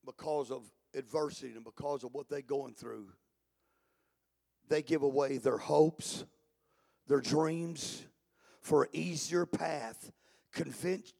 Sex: male